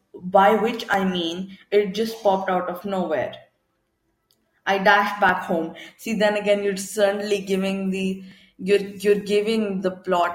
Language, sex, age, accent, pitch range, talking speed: English, female, 20-39, Indian, 185-225 Hz, 150 wpm